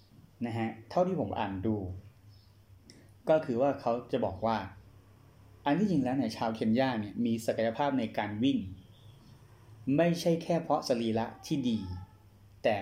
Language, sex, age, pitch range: Thai, male, 20-39, 100-130 Hz